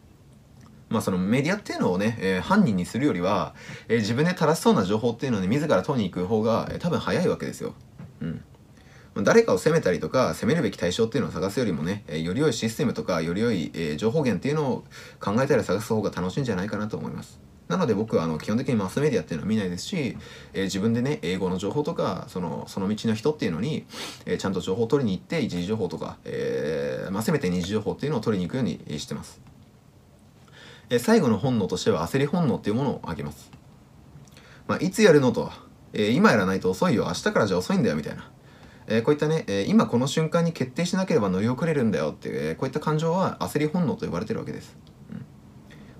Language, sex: Japanese, male